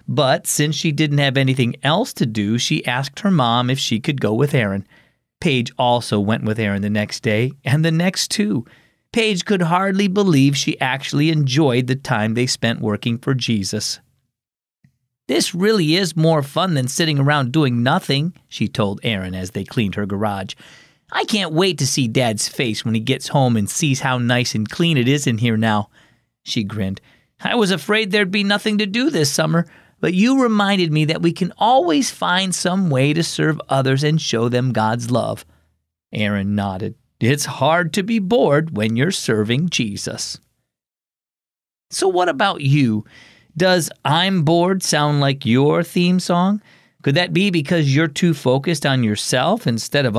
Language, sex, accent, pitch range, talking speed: English, male, American, 120-180 Hz, 180 wpm